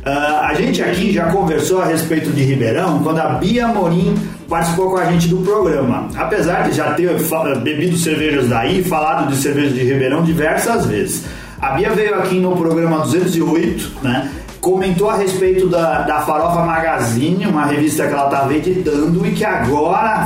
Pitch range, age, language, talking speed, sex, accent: 155-195 Hz, 30-49, Portuguese, 180 wpm, male, Brazilian